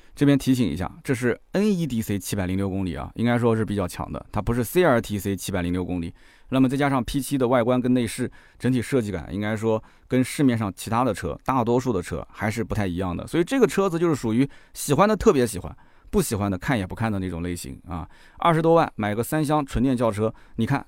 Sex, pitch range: male, 100-135 Hz